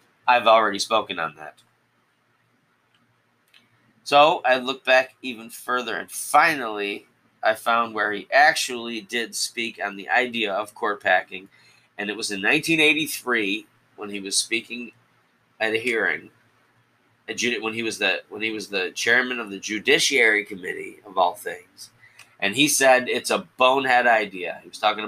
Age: 30-49